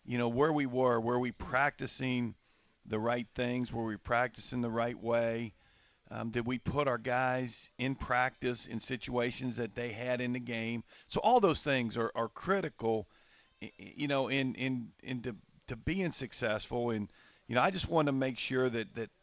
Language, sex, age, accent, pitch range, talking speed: English, male, 50-69, American, 115-135 Hz, 185 wpm